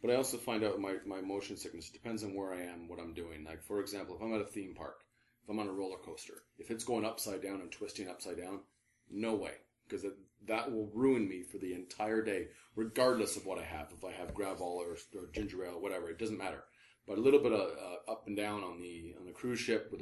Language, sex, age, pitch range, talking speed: English, male, 30-49, 90-110 Hz, 260 wpm